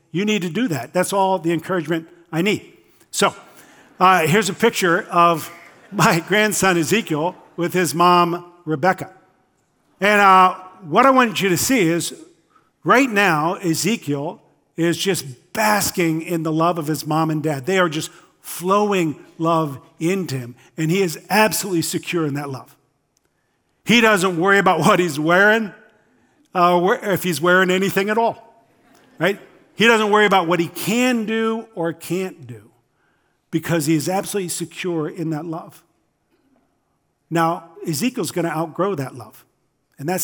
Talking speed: 155 wpm